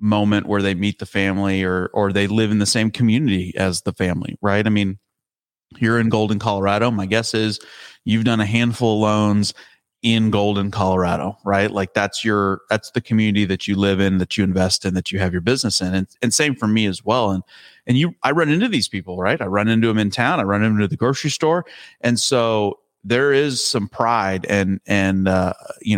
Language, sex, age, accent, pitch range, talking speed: English, male, 30-49, American, 95-110 Hz, 220 wpm